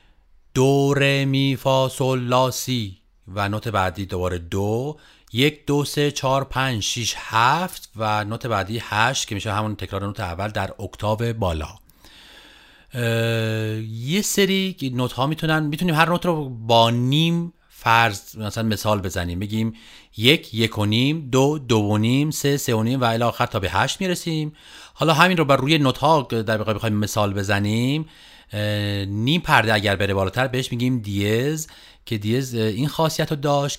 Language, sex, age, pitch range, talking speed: Persian, male, 40-59, 110-140 Hz, 155 wpm